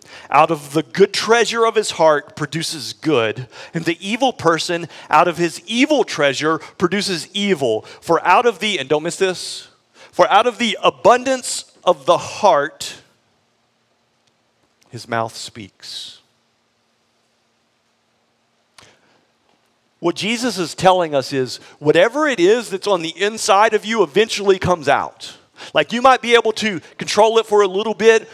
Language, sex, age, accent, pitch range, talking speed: English, male, 40-59, American, 160-220 Hz, 150 wpm